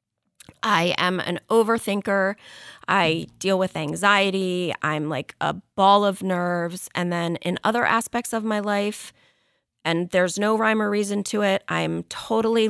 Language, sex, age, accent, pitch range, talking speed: English, female, 30-49, American, 175-230 Hz, 150 wpm